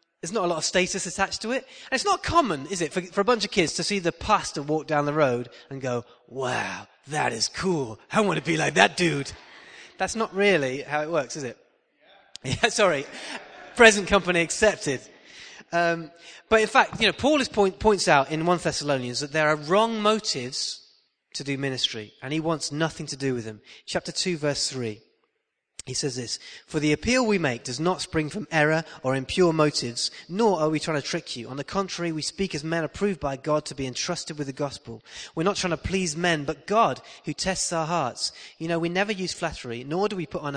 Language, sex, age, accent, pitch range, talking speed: English, male, 30-49, British, 135-180 Hz, 220 wpm